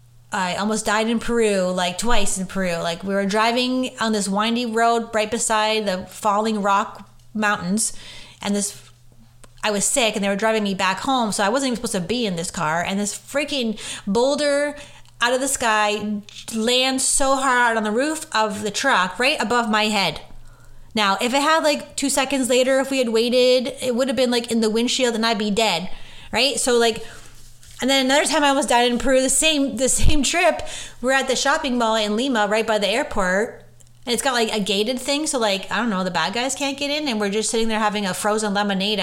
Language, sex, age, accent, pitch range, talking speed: English, female, 30-49, American, 200-255 Hz, 225 wpm